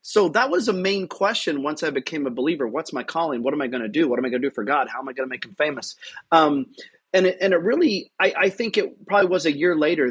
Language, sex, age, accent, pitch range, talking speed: English, male, 30-49, American, 135-185 Hz, 305 wpm